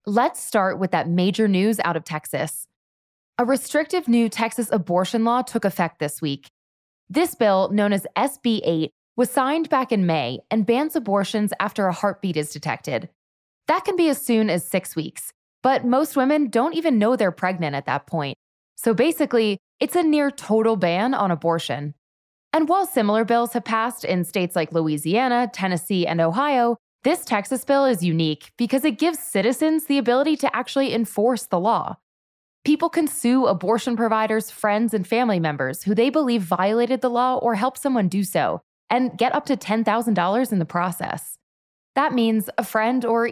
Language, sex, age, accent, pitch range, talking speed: English, female, 20-39, American, 180-255 Hz, 175 wpm